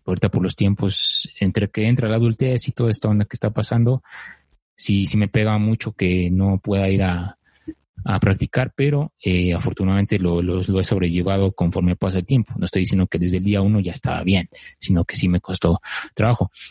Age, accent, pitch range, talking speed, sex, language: 30-49, Mexican, 95-125 Hz, 205 wpm, male, Spanish